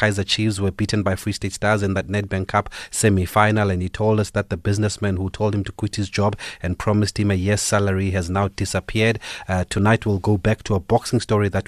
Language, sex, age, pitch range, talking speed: English, male, 30-49, 95-110 Hz, 235 wpm